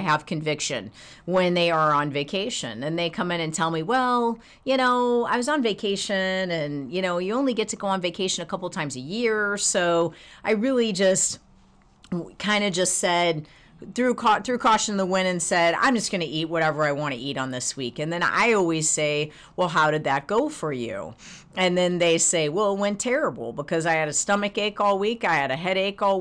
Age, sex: 40-59, female